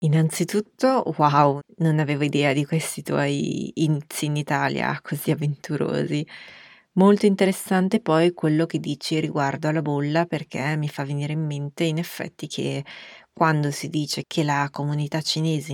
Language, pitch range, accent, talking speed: Italian, 145-170 Hz, native, 145 wpm